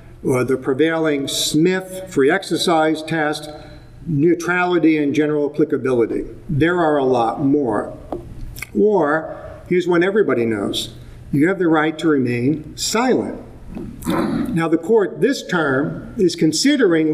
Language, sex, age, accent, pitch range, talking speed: English, male, 50-69, American, 140-175 Hz, 125 wpm